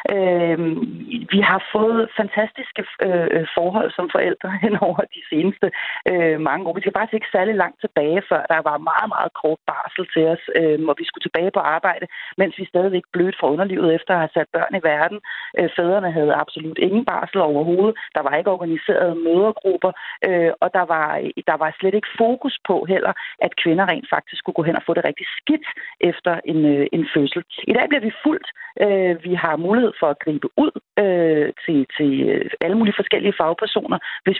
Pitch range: 165-205 Hz